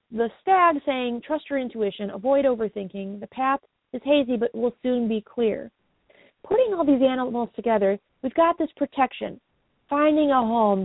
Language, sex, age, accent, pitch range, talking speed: English, female, 40-59, American, 220-290 Hz, 160 wpm